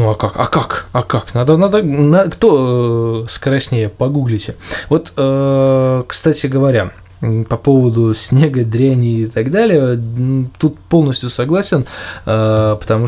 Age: 20-39